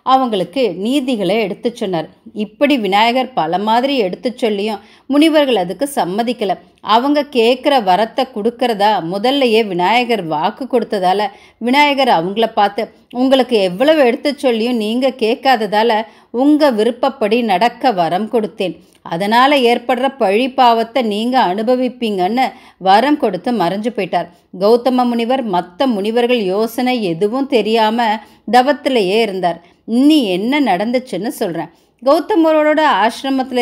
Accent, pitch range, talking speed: native, 205-255 Hz, 105 wpm